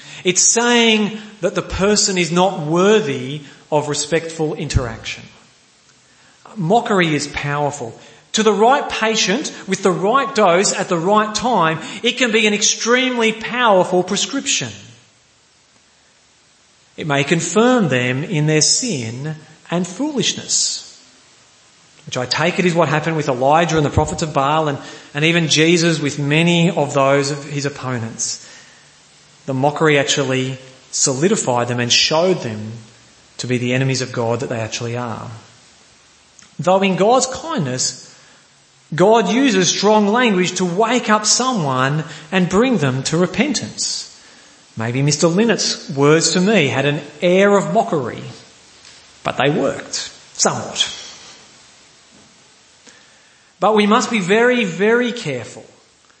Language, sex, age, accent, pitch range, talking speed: English, male, 40-59, Australian, 140-210 Hz, 130 wpm